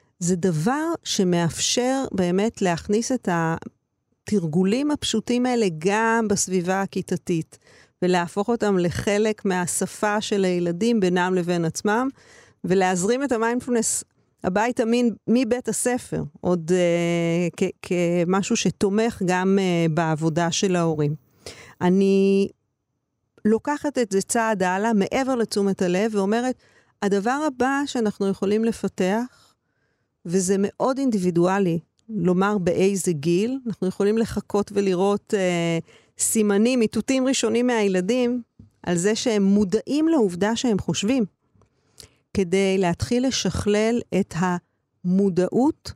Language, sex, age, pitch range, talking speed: Hebrew, female, 40-59, 180-230 Hz, 105 wpm